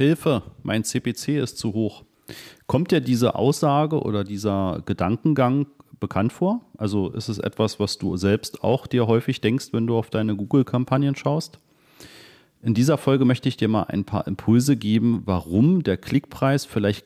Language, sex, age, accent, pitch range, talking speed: German, male, 40-59, German, 105-130 Hz, 165 wpm